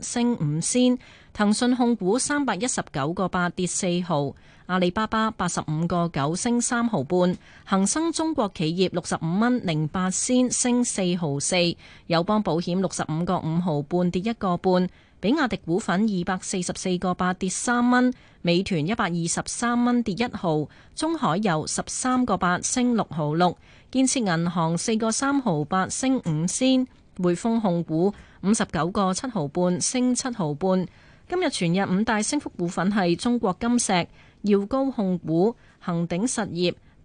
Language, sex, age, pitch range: Chinese, female, 30-49, 175-240 Hz